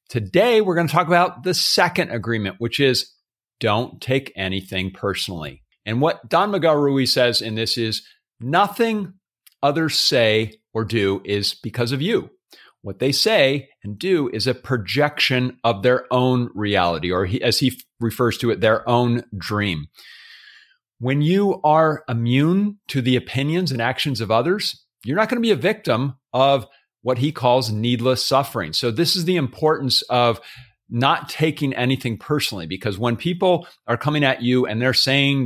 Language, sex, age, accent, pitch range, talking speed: English, male, 40-59, American, 115-155 Hz, 165 wpm